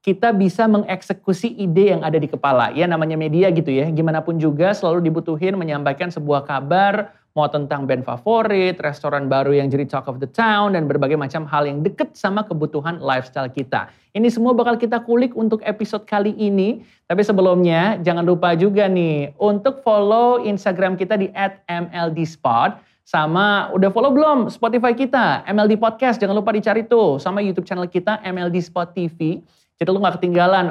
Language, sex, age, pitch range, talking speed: Indonesian, male, 30-49, 165-215 Hz, 170 wpm